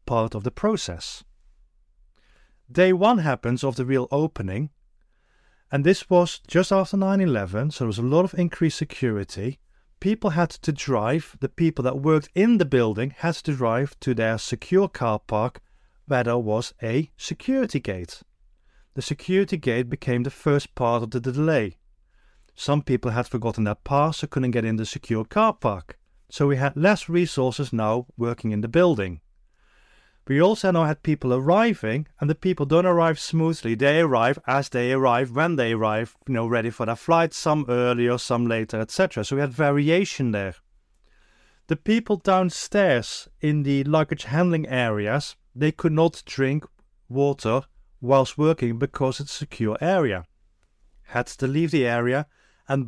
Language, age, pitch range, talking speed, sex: English, 30-49, 120-160 Hz, 165 wpm, male